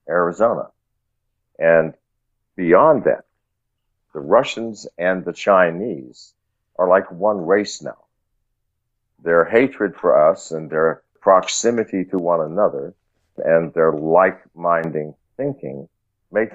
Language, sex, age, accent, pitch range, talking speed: English, male, 50-69, American, 80-95 Hz, 105 wpm